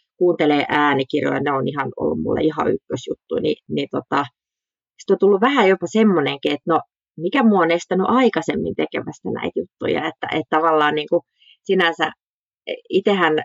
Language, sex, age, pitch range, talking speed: Finnish, female, 30-49, 150-205 Hz, 155 wpm